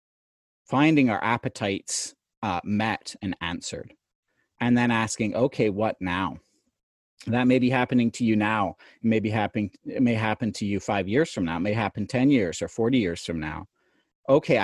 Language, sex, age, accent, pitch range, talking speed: English, male, 40-59, American, 100-130 Hz, 170 wpm